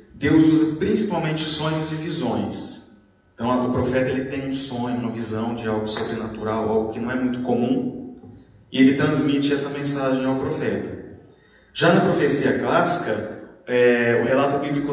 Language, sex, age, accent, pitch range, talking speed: Portuguese, male, 30-49, Brazilian, 120-150 Hz, 155 wpm